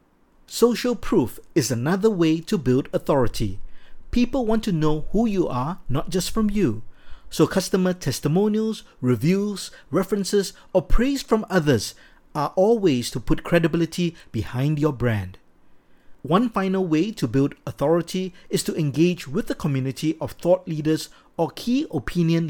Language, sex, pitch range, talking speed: English, male, 135-185 Hz, 145 wpm